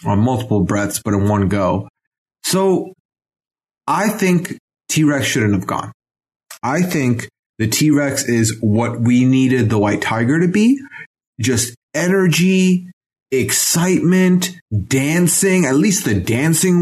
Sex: male